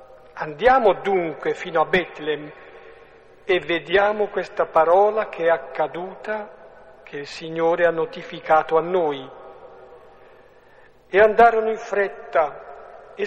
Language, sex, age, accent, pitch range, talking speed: Italian, male, 50-69, native, 160-205 Hz, 110 wpm